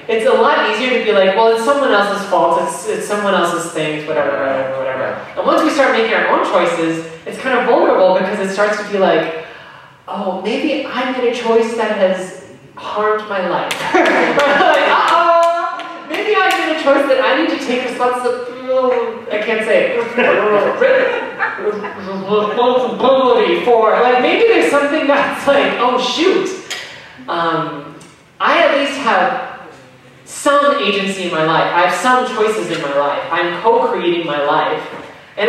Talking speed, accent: 165 wpm, American